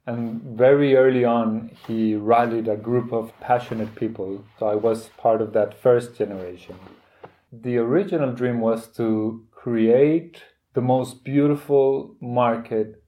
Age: 30-49